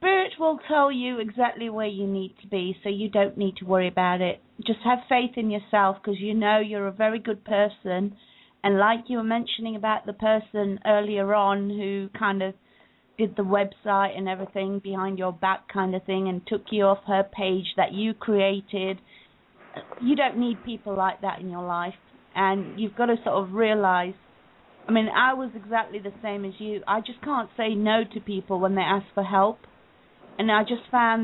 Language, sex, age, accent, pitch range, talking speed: English, female, 40-59, British, 195-230 Hz, 200 wpm